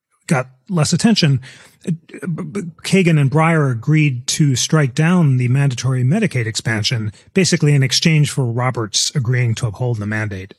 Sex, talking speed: male, 135 wpm